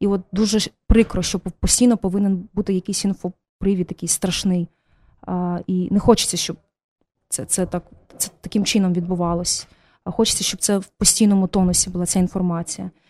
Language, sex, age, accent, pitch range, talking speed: Ukrainian, female, 20-39, native, 180-210 Hz, 155 wpm